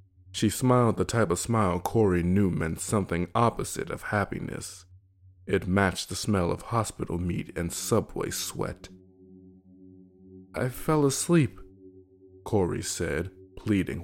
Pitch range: 90-105 Hz